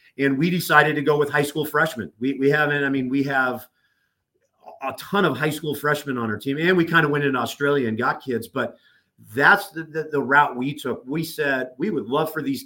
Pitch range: 135-165 Hz